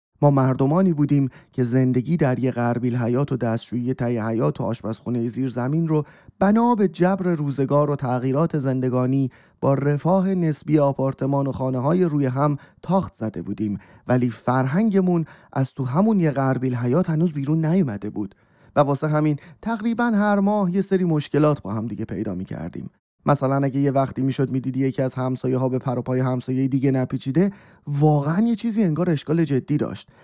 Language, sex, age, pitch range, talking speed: Persian, male, 30-49, 130-175 Hz, 170 wpm